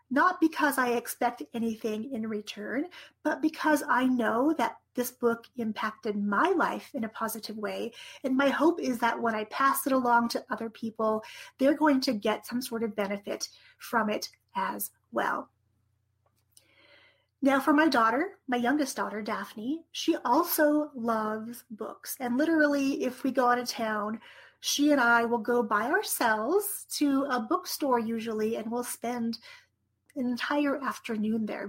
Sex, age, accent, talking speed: female, 40-59, American, 160 wpm